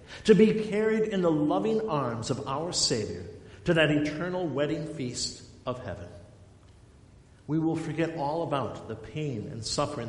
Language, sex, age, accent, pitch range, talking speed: English, male, 50-69, American, 105-155 Hz, 155 wpm